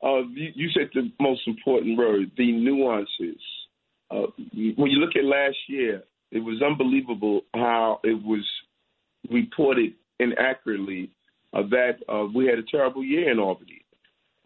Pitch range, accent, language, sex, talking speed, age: 130-155 Hz, American, English, male, 150 wpm, 40-59